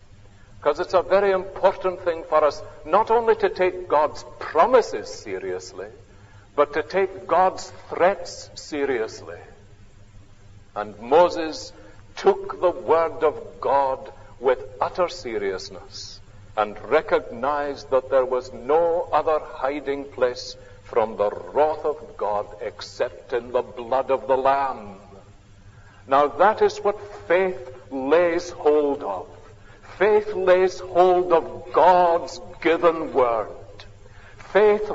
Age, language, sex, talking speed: 60-79, English, male, 115 wpm